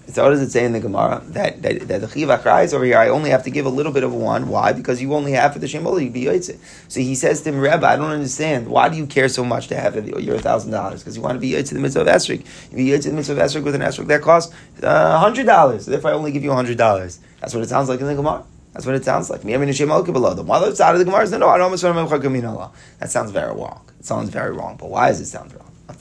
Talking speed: 305 wpm